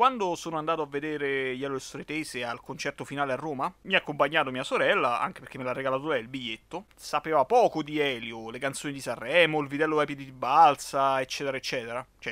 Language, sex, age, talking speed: Italian, male, 30-49, 205 wpm